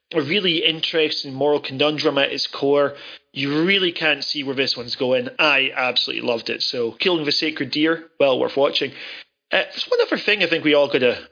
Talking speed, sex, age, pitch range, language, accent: 200 wpm, male, 30-49, 140-180 Hz, English, British